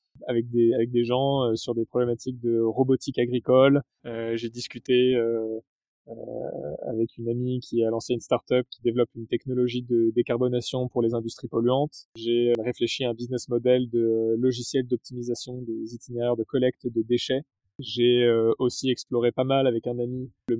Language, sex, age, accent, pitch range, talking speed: French, male, 20-39, French, 115-130 Hz, 170 wpm